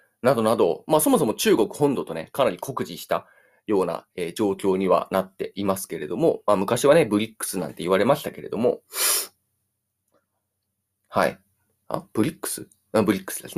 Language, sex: Japanese, male